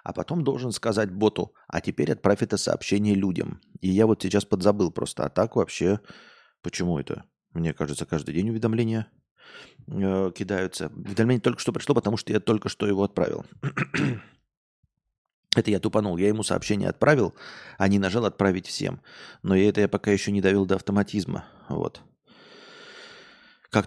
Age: 30-49